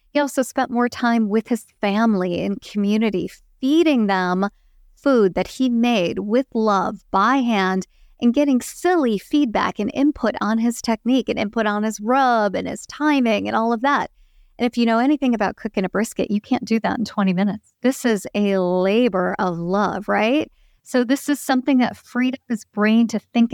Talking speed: 190 wpm